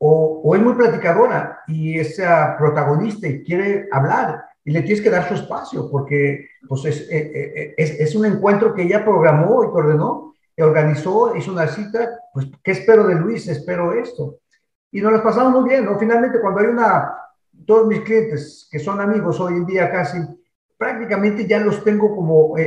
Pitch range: 150-195 Hz